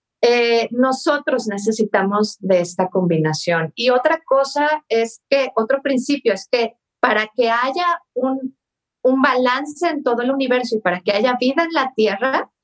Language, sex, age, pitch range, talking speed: Spanish, female, 40-59, 215-270 Hz, 155 wpm